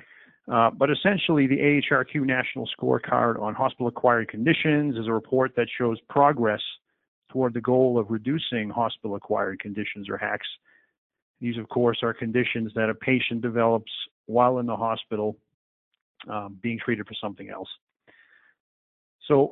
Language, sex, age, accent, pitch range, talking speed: English, male, 40-59, American, 110-130 Hz, 140 wpm